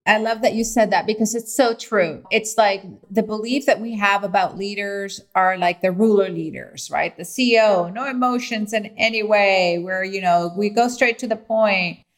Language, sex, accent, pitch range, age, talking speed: English, female, American, 200-250 Hz, 30-49, 200 wpm